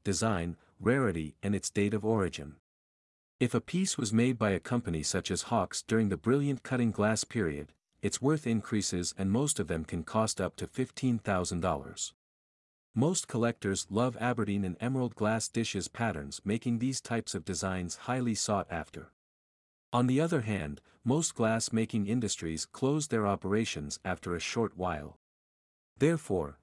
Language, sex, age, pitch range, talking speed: English, male, 50-69, 90-120 Hz, 155 wpm